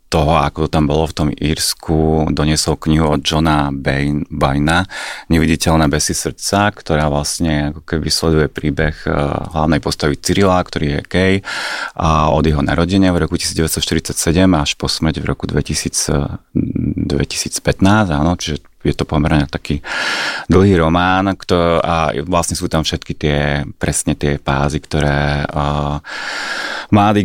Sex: male